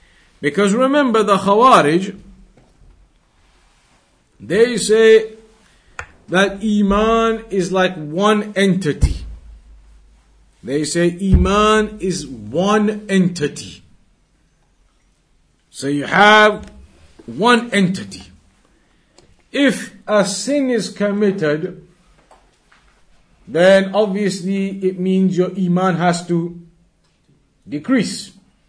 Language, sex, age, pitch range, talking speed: English, male, 50-69, 165-210 Hz, 75 wpm